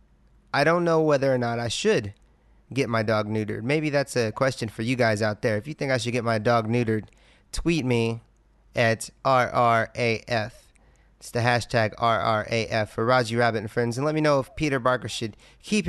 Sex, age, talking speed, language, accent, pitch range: male, 30-49, 195 wpm, English, American, 110-140 Hz